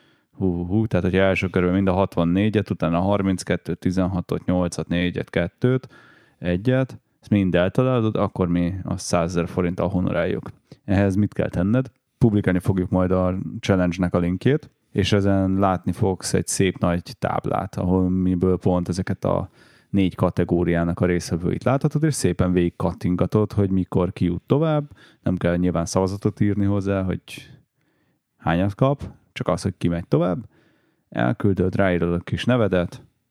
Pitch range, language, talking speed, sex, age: 90-110 Hz, Hungarian, 150 wpm, male, 30-49